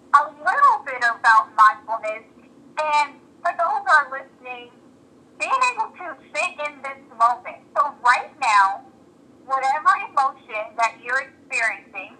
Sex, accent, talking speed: female, American, 130 wpm